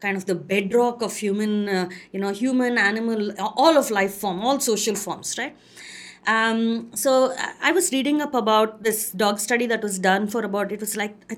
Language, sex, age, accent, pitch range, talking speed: English, female, 20-39, Indian, 200-270 Hz, 200 wpm